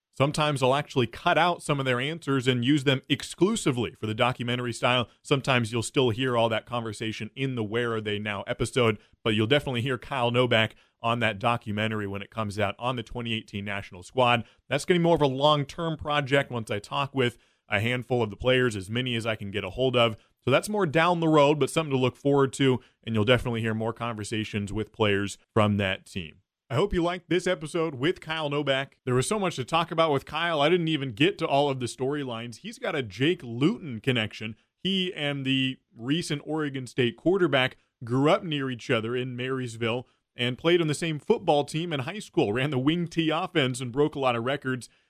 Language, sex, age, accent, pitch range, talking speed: English, male, 30-49, American, 115-145 Hz, 220 wpm